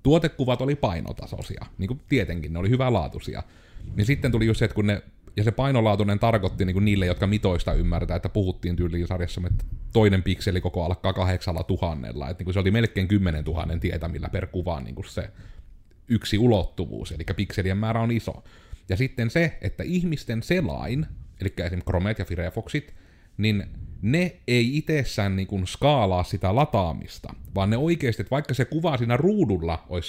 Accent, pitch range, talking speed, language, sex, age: native, 90-115 Hz, 160 wpm, Finnish, male, 30-49